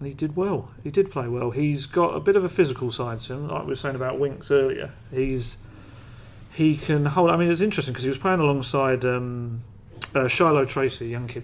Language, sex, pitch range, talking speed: English, male, 115-135 Hz, 235 wpm